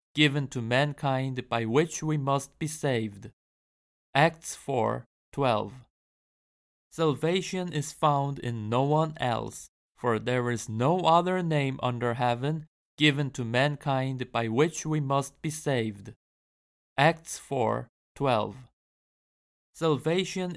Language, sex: Korean, male